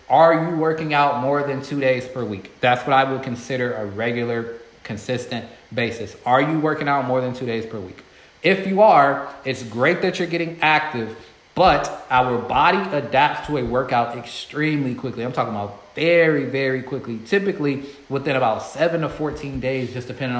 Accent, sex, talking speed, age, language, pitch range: American, male, 180 wpm, 20-39, English, 125-155 Hz